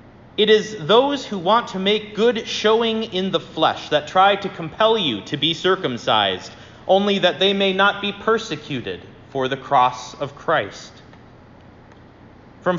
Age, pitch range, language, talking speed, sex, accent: 30-49, 160-225 Hz, English, 155 wpm, male, American